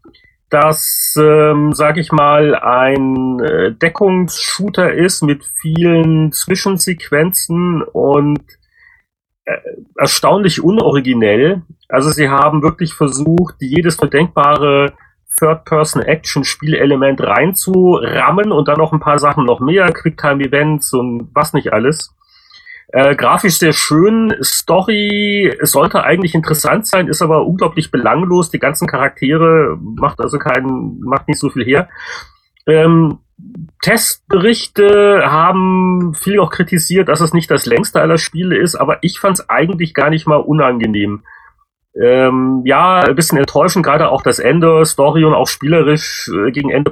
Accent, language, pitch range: German, German, 145-180 Hz